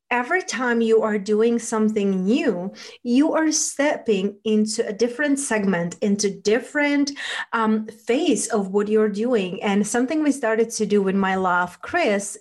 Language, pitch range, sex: English, 205-245 Hz, female